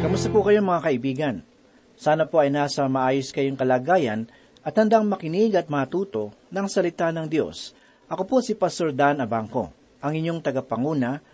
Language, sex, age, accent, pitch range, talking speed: Filipino, male, 40-59, native, 145-200 Hz, 160 wpm